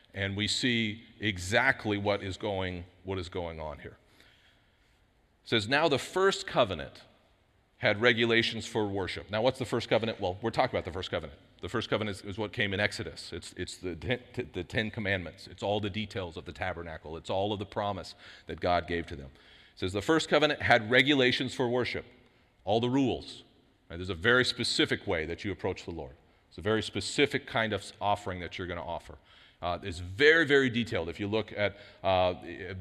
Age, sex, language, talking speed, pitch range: 40-59, male, English, 200 wpm, 95-115 Hz